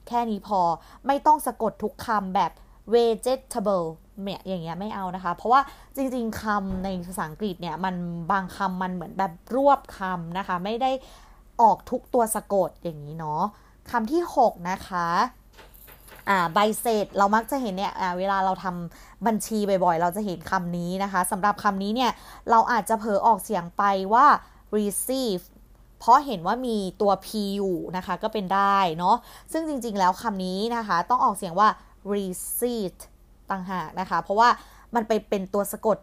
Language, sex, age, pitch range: Thai, female, 20-39, 185-230 Hz